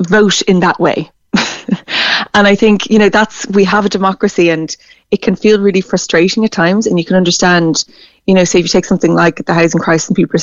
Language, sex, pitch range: English, female, 170-195 Hz